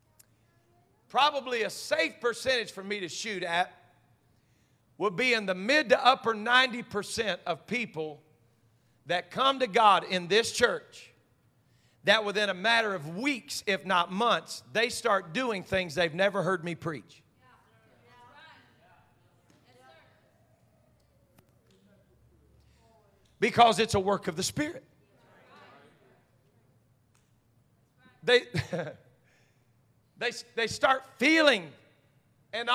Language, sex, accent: English, male, American